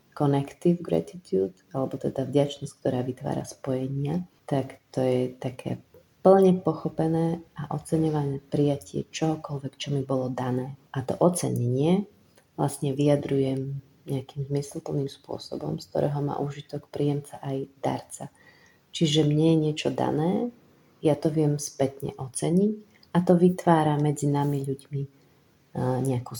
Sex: female